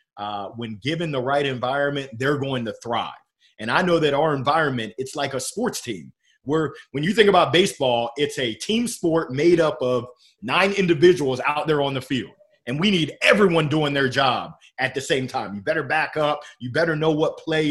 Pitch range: 130-165 Hz